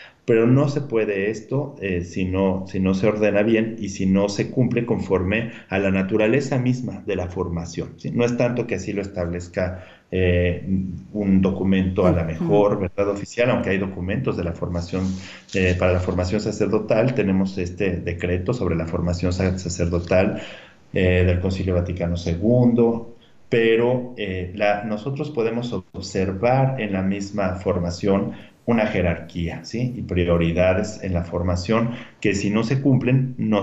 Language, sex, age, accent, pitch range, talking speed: Spanish, male, 40-59, Mexican, 90-110 Hz, 160 wpm